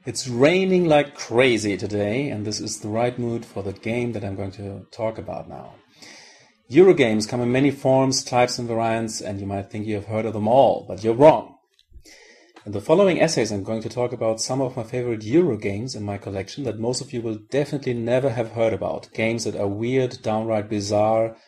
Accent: German